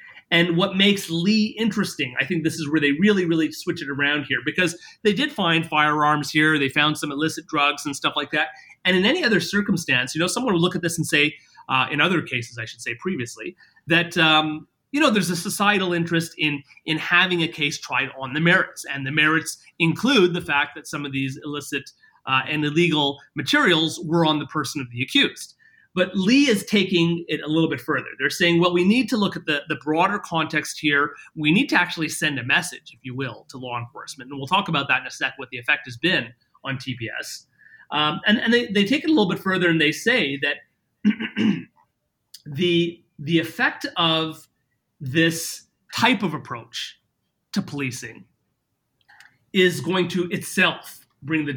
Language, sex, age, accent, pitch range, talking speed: English, male, 30-49, American, 145-180 Hz, 200 wpm